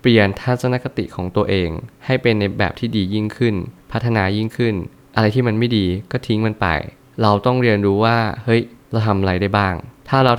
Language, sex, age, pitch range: Thai, male, 20-39, 100-120 Hz